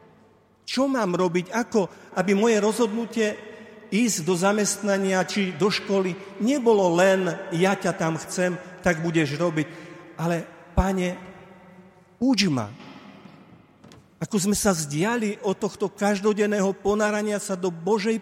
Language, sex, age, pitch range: Slovak, male, 50-69, 155-210 Hz